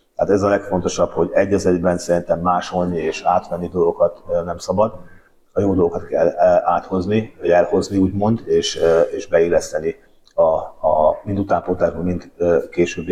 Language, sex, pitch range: Hungarian, male, 90-110 Hz